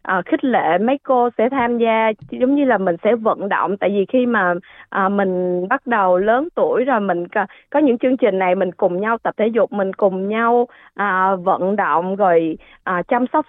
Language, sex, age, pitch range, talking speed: Vietnamese, female, 20-39, 190-265 Hz, 195 wpm